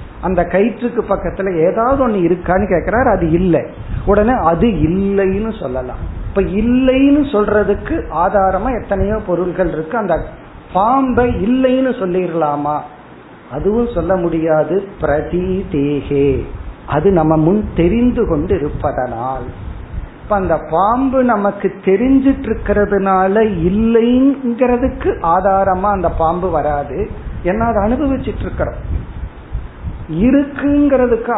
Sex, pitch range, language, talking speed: male, 160-220 Hz, Tamil, 65 wpm